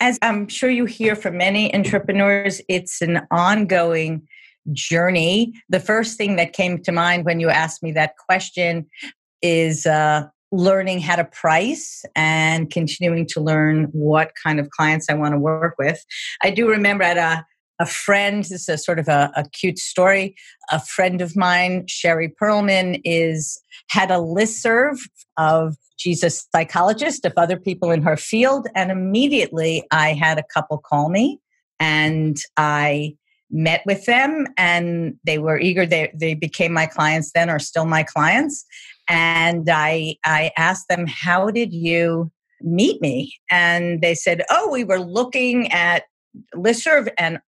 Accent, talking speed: American, 160 wpm